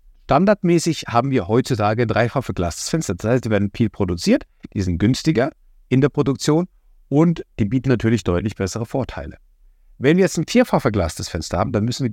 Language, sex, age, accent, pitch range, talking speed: German, male, 60-79, German, 90-125 Hz, 180 wpm